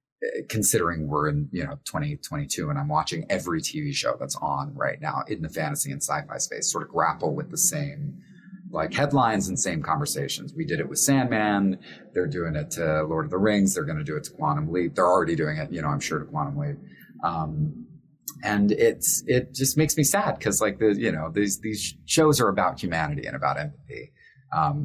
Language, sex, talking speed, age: English, male, 215 wpm, 30-49